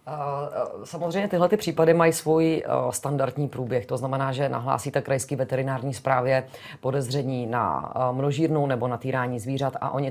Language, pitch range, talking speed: Czech, 125-145 Hz, 140 wpm